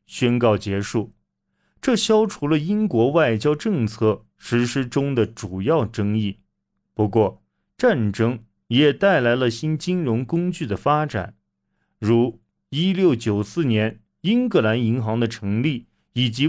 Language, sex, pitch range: Chinese, male, 105-150 Hz